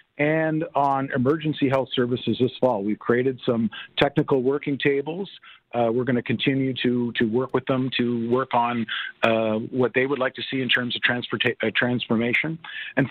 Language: English